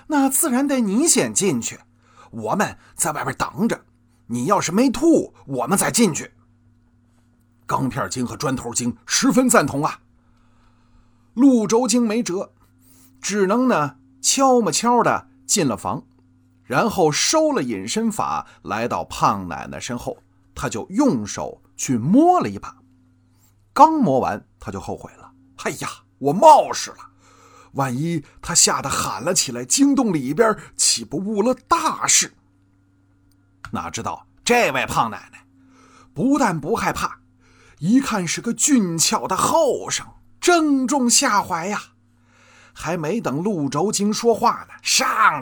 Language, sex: Chinese, male